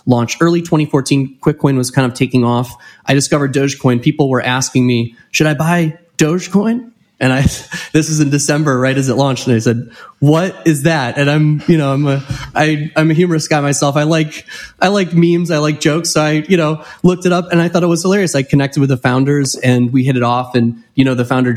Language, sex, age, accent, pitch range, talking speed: English, male, 20-39, American, 125-155 Hz, 235 wpm